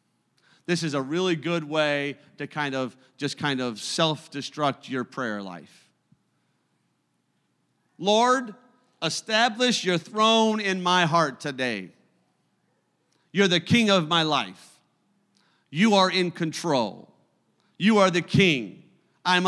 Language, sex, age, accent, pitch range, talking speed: English, male, 50-69, American, 150-195 Hz, 120 wpm